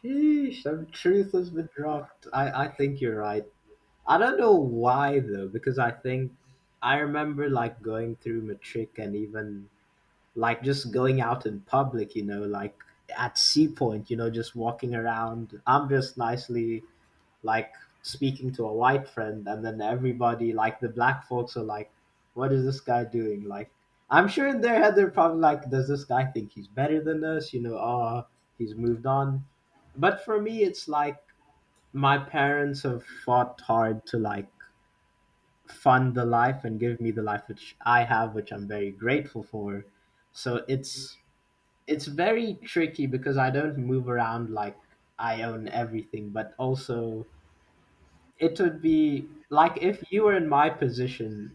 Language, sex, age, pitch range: English, male, 20-39, 110-145 Hz